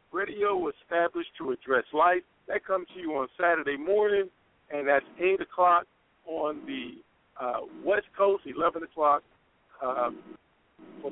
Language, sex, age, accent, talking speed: English, male, 50-69, American, 135 wpm